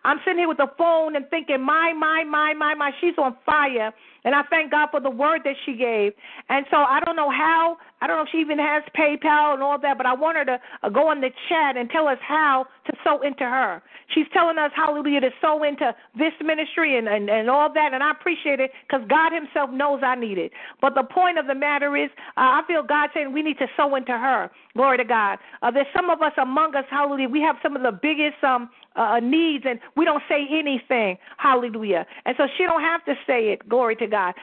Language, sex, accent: English, female, American